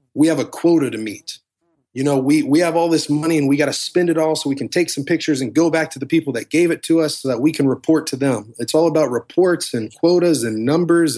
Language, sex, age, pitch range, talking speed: English, male, 30-49, 130-160 Hz, 285 wpm